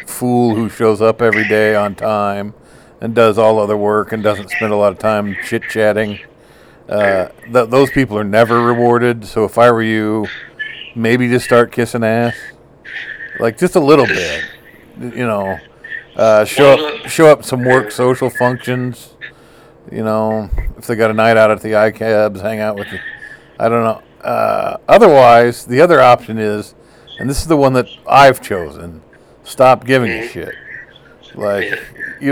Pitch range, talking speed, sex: 110-125 Hz, 175 wpm, male